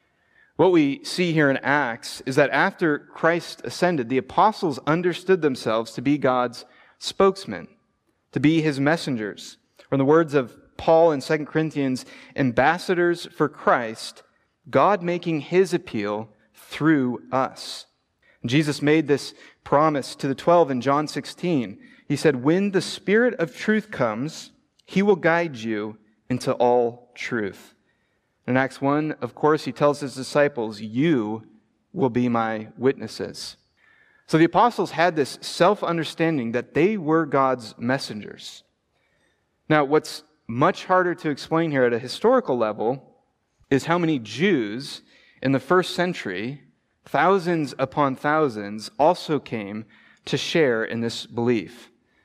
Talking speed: 135 wpm